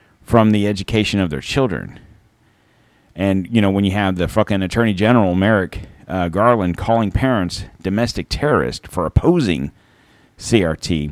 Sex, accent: male, American